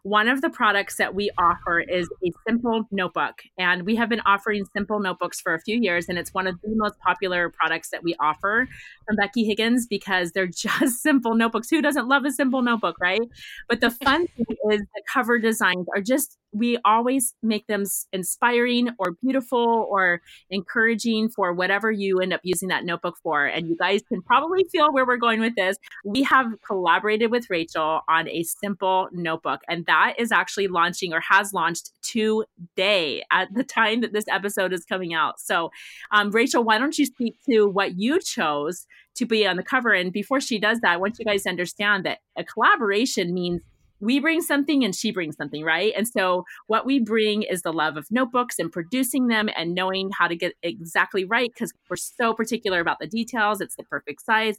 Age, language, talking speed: 30-49, English, 200 wpm